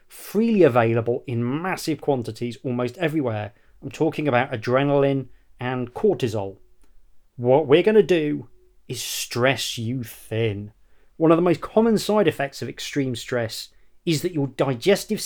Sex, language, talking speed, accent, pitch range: male, English, 140 wpm, British, 120-165 Hz